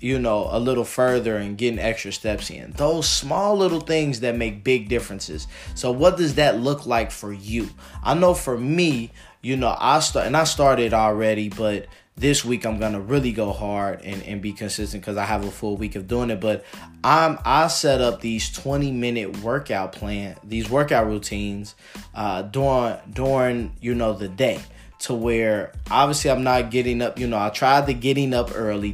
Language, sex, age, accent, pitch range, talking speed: English, male, 20-39, American, 105-130 Hz, 195 wpm